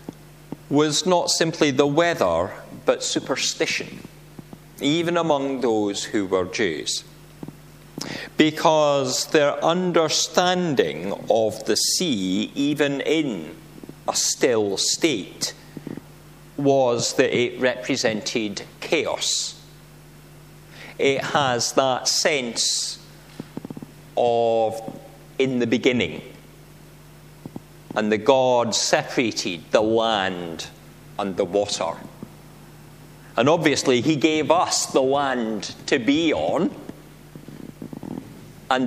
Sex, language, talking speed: male, English, 90 wpm